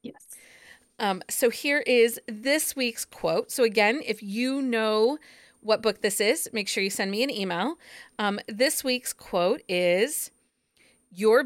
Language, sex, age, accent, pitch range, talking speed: English, female, 40-59, American, 200-260 Hz, 150 wpm